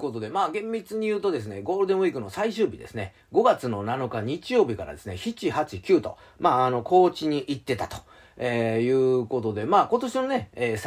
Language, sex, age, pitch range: Japanese, male, 40-59, 110-175 Hz